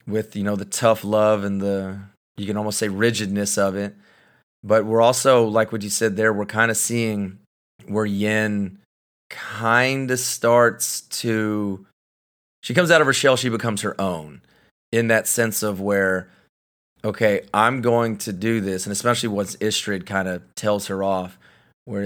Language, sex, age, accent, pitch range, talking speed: English, male, 30-49, American, 100-115 Hz, 175 wpm